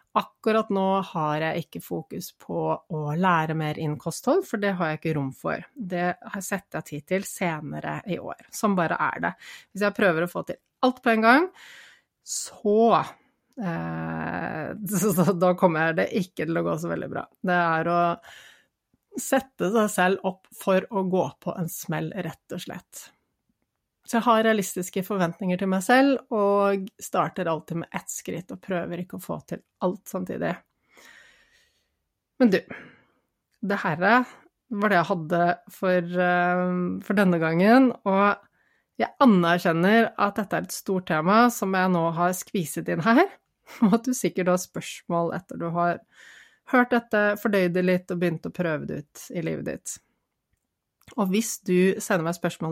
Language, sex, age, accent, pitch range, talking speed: English, female, 30-49, Swedish, 170-215 Hz, 165 wpm